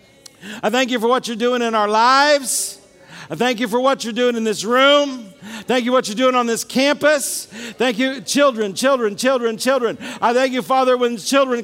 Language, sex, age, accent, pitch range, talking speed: English, male, 50-69, American, 245-275 Hz, 205 wpm